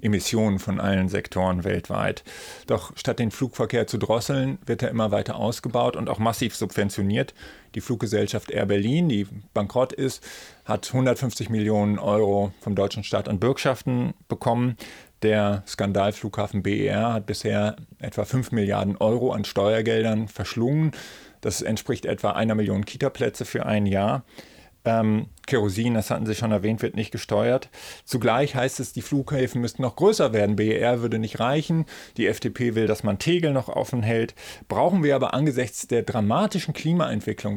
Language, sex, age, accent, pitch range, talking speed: German, male, 30-49, German, 105-130 Hz, 155 wpm